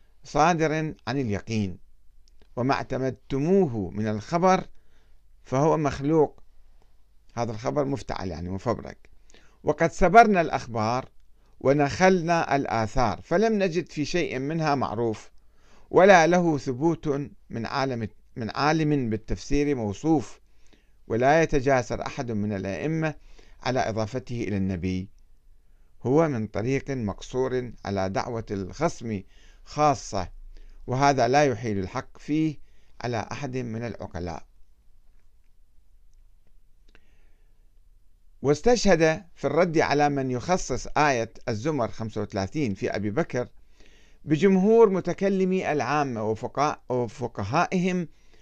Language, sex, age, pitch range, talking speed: Arabic, male, 50-69, 100-150 Hz, 95 wpm